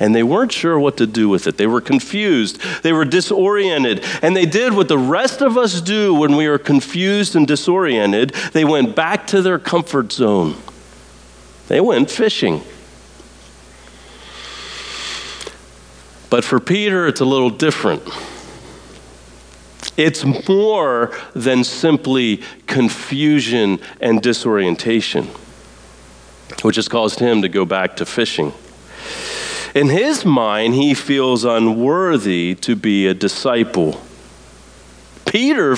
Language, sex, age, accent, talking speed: English, male, 40-59, American, 125 wpm